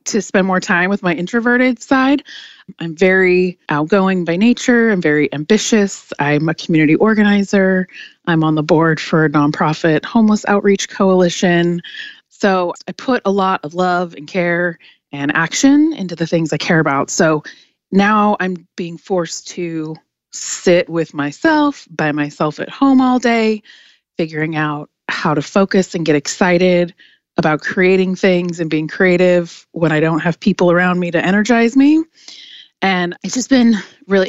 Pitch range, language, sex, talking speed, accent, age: 160-200 Hz, English, female, 160 wpm, American, 30-49